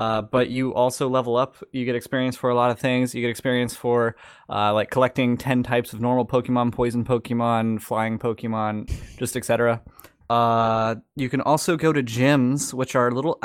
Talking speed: 190 wpm